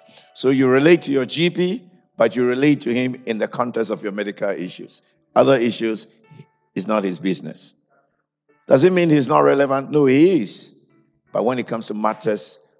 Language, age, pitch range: English, 50-69, 105-140 Hz